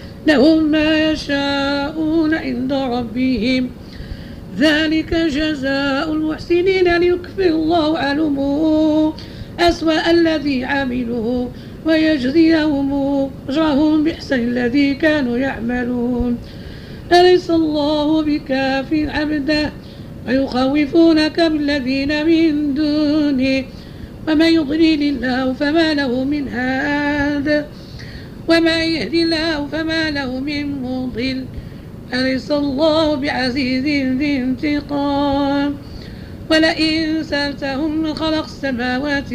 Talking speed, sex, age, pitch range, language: 80 wpm, female, 50-69, 275-315 Hz, Arabic